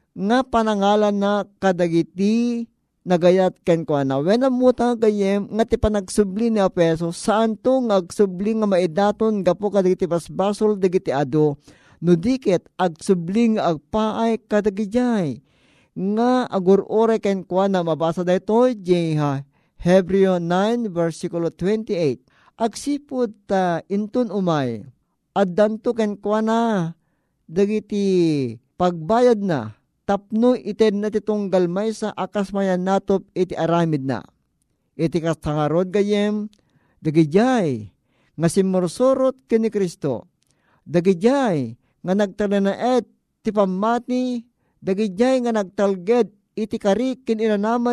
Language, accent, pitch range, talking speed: Filipino, native, 170-215 Hz, 105 wpm